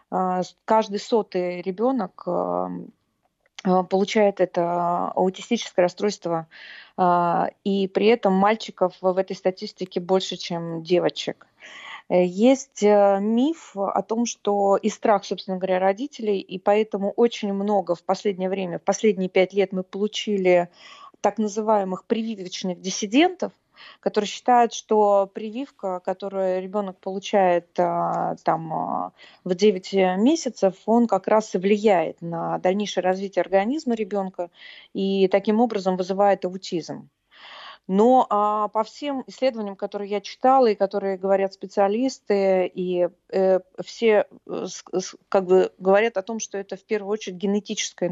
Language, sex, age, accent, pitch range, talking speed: Russian, female, 20-39, native, 185-215 Hz, 115 wpm